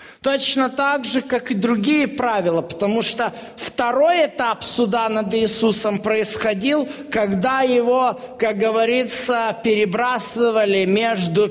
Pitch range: 180-245 Hz